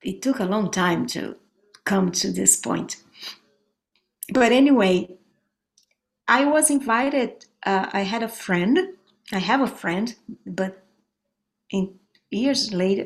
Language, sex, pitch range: English, female, 195-270 Hz